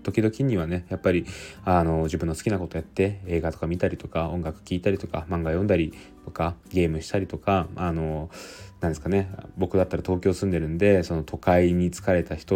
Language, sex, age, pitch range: Japanese, male, 20-39, 80-100 Hz